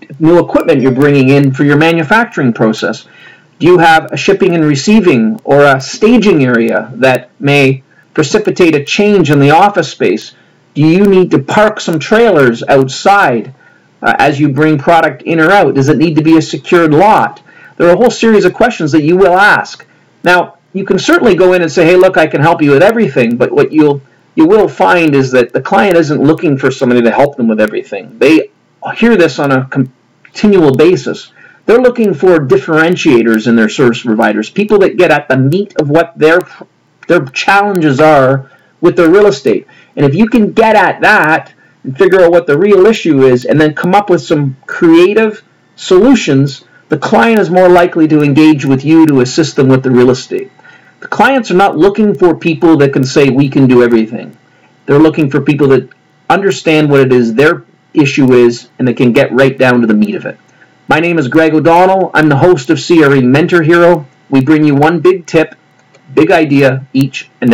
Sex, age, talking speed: male, 40-59, 205 wpm